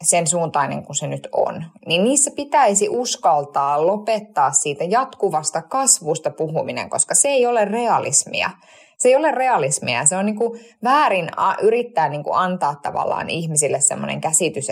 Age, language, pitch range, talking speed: 20-39, Finnish, 160-230 Hz, 155 wpm